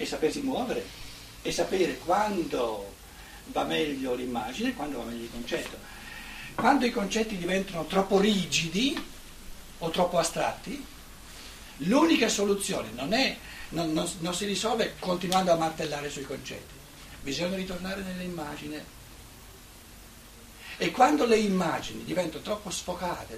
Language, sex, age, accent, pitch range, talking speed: Italian, male, 60-79, native, 145-200 Hz, 125 wpm